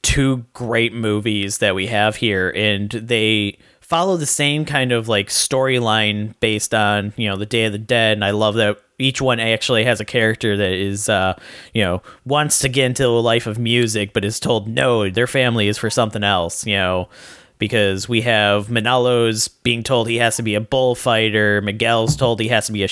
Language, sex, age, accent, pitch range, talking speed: English, male, 30-49, American, 105-125 Hz, 205 wpm